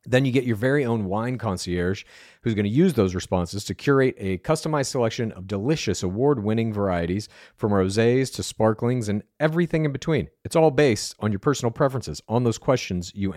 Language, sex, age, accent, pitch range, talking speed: English, male, 40-59, American, 105-140 Hz, 190 wpm